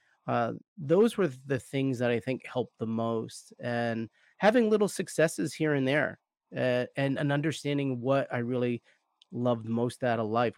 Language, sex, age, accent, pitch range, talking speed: English, male, 30-49, American, 120-140 Hz, 170 wpm